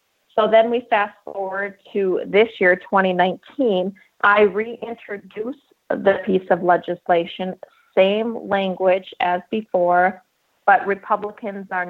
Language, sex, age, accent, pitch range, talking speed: English, female, 30-49, American, 180-215 Hz, 110 wpm